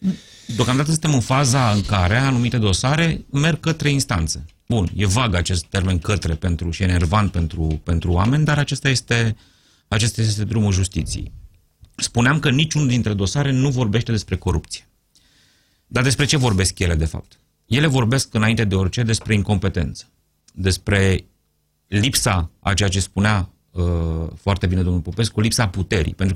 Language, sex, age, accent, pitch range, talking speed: Romanian, male, 30-49, native, 90-125 Hz, 155 wpm